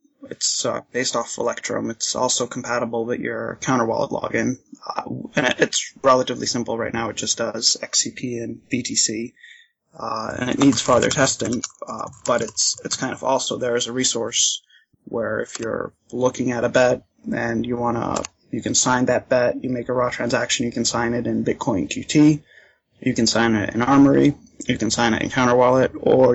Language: English